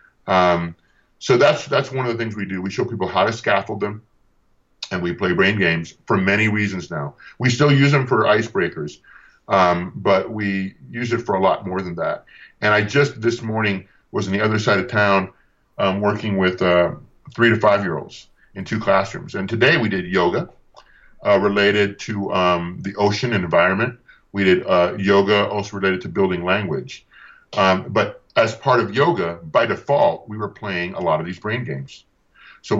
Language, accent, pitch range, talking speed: English, American, 95-110 Hz, 195 wpm